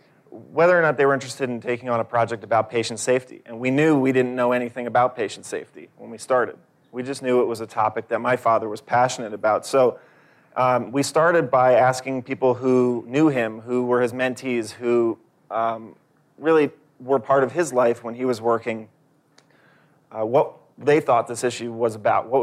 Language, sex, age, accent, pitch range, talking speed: English, male, 30-49, American, 120-135 Hz, 200 wpm